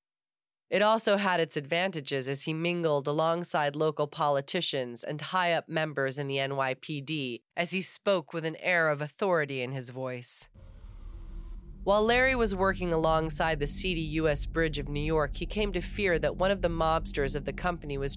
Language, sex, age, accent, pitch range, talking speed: English, female, 30-49, American, 135-175 Hz, 175 wpm